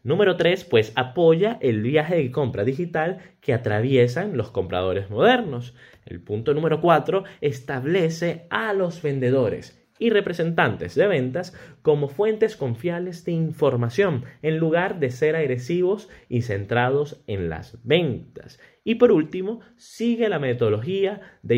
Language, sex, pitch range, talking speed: Spanish, male, 120-170 Hz, 135 wpm